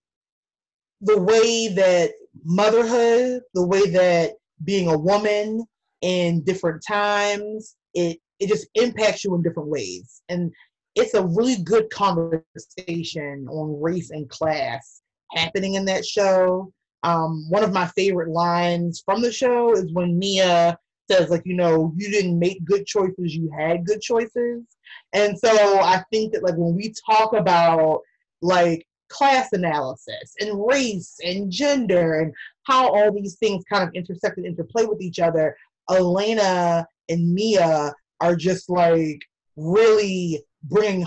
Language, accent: English, American